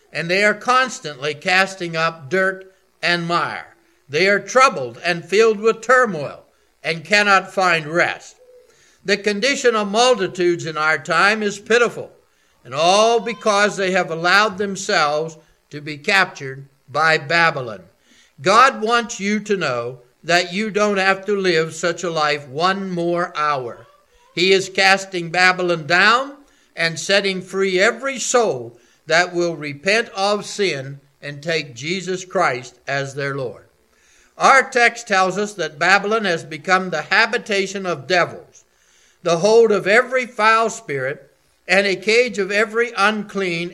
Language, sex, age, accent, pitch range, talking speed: English, male, 60-79, American, 160-210 Hz, 145 wpm